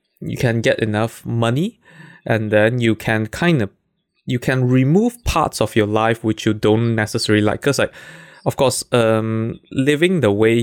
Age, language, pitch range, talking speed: 20-39, English, 110-140 Hz, 175 wpm